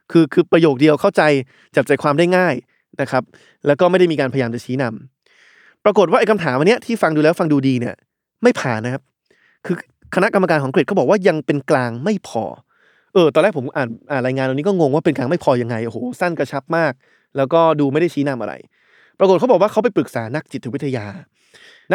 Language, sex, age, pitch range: Thai, male, 20-39, 135-185 Hz